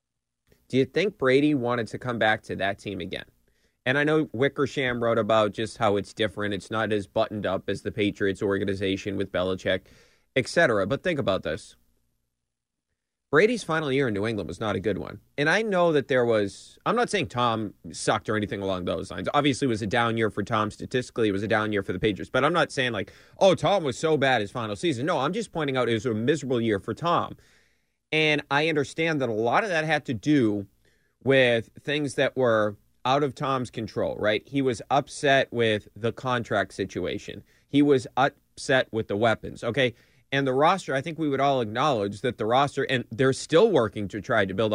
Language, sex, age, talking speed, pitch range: English, male, 30-49, 215 wpm, 105-140 Hz